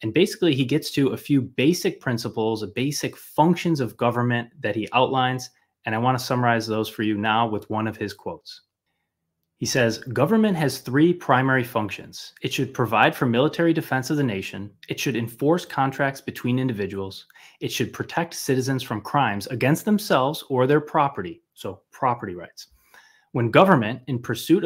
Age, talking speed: 20-39, 175 wpm